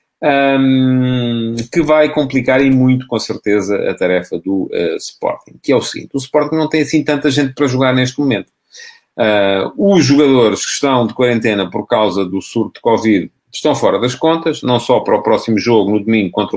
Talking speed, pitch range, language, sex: 195 wpm, 105-135 Hz, English, male